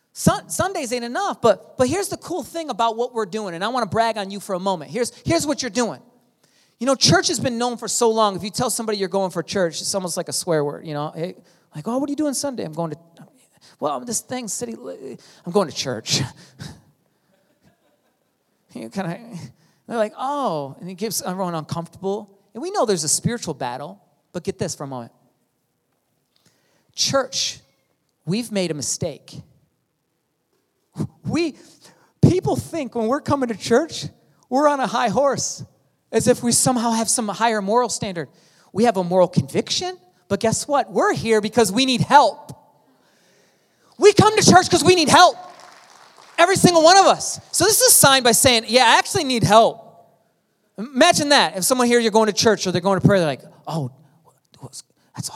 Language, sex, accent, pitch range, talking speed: English, male, American, 175-255 Hz, 195 wpm